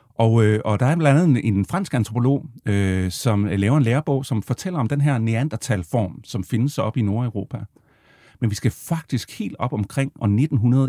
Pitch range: 105-140 Hz